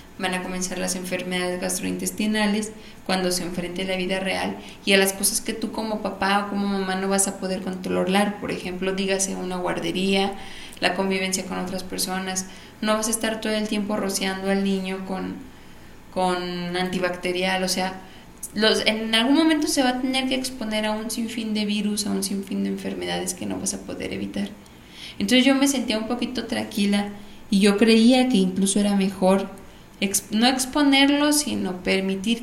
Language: Spanish